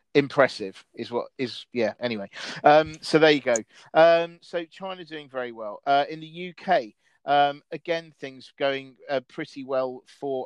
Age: 40-59